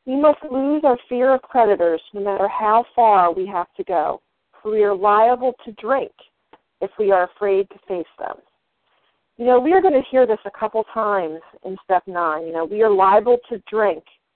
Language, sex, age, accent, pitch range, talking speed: English, female, 40-59, American, 200-260 Hz, 205 wpm